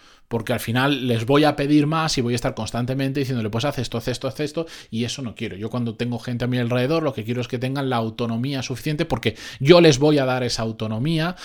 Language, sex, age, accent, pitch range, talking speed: Spanish, male, 20-39, Spanish, 120-150 Hz, 255 wpm